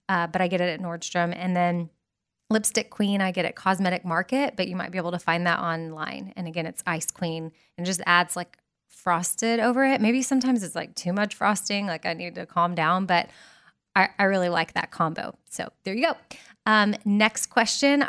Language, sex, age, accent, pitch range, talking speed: English, female, 20-39, American, 175-220 Hz, 210 wpm